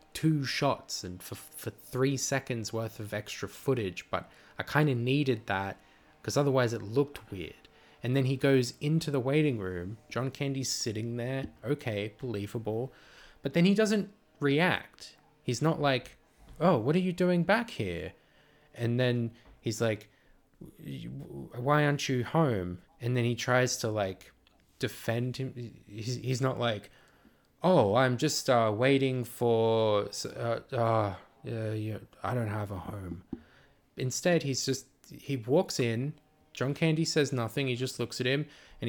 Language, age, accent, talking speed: English, 20-39, Australian, 155 wpm